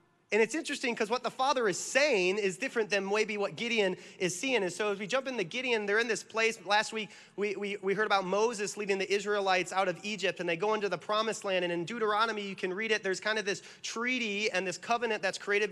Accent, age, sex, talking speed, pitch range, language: American, 30-49, male, 250 wpm, 185-220 Hz, English